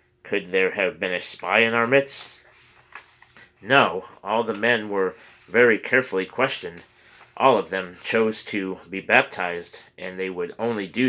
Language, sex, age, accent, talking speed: English, male, 30-49, American, 155 wpm